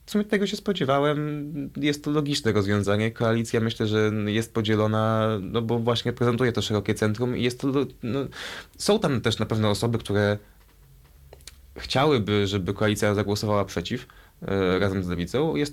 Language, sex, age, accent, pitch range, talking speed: Polish, male, 20-39, native, 105-135 Hz, 160 wpm